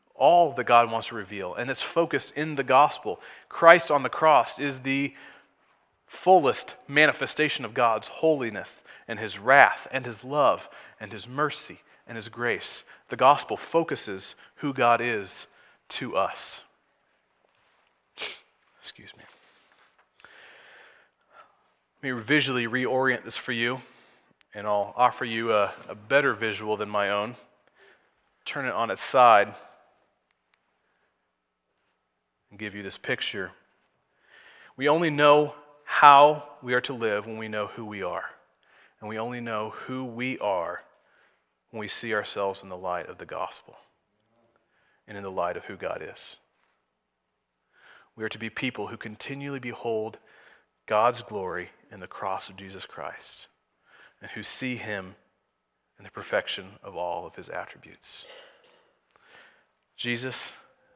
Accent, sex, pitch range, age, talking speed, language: American, male, 105-145 Hz, 30-49, 140 wpm, English